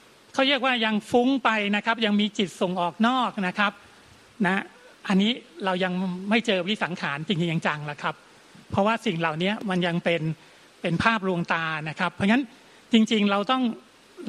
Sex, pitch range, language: male, 180-225 Hz, Thai